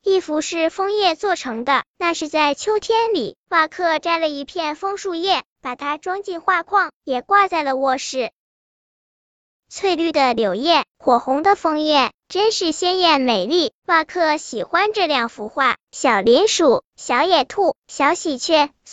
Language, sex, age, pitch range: Chinese, male, 10-29, 280-360 Hz